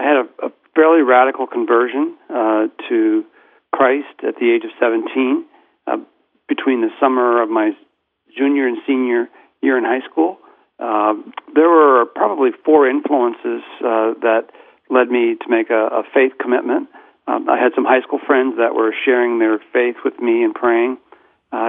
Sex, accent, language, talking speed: male, American, English, 165 wpm